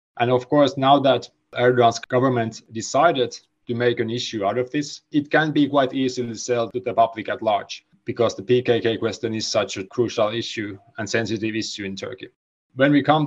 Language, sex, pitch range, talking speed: English, male, 120-140 Hz, 195 wpm